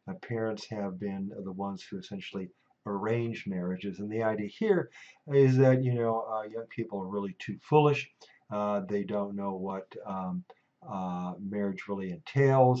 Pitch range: 100-120 Hz